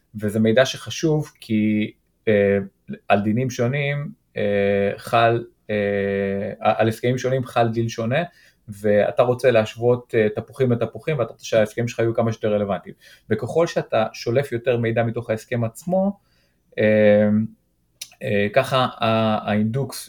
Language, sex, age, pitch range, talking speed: Hebrew, male, 30-49, 105-130 Hz, 130 wpm